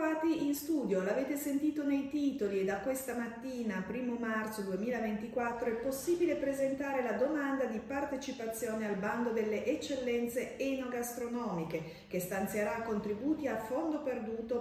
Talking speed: 130 wpm